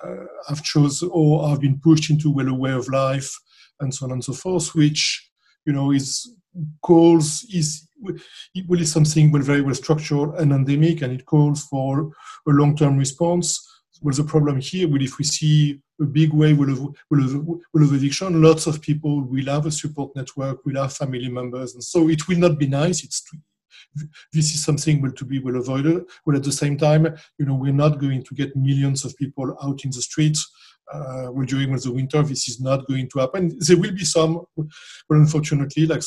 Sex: male